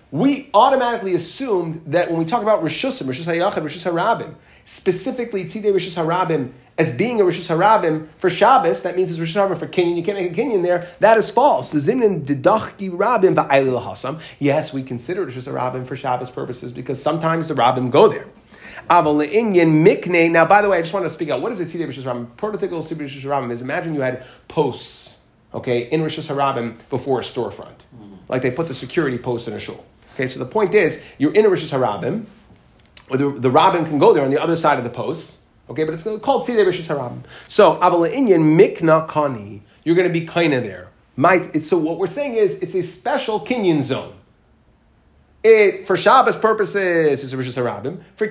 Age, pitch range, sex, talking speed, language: 30-49, 135-195 Hz, male, 190 wpm, English